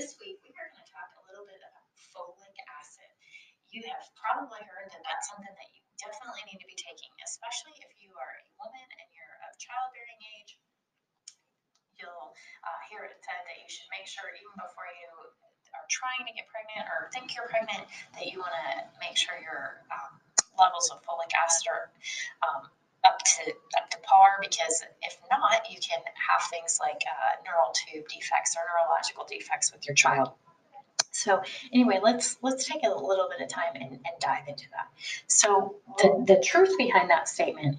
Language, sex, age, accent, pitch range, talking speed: English, female, 20-39, American, 165-250 Hz, 185 wpm